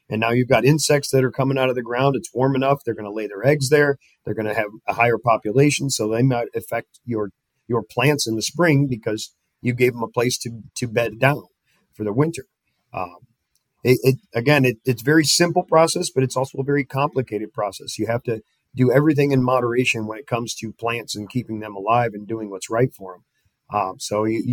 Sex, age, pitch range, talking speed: male, 40-59, 115-135 Hz, 230 wpm